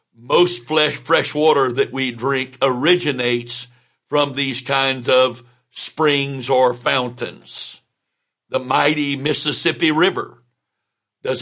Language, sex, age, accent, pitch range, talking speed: English, male, 60-79, American, 125-155 Hz, 105 wpm